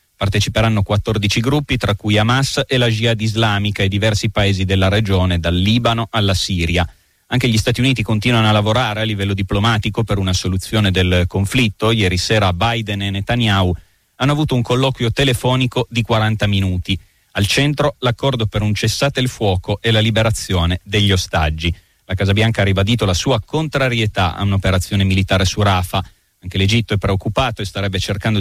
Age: 30-49